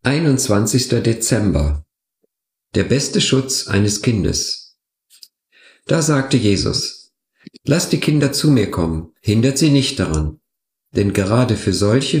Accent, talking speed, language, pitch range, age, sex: German, 120 wpm, German, 95-130 Hz, 50-69, male